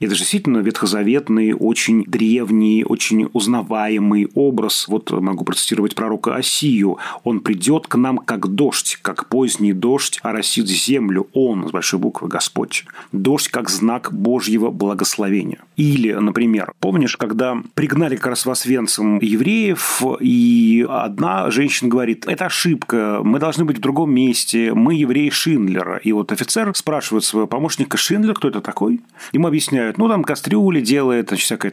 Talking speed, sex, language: 145 wpm, male, Russian